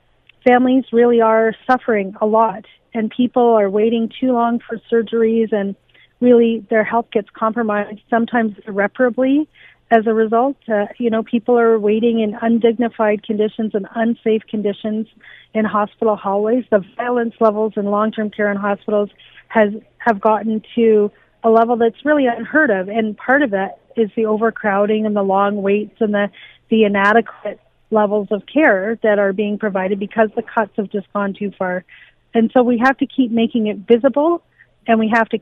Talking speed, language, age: 170 wpm, English, 40-59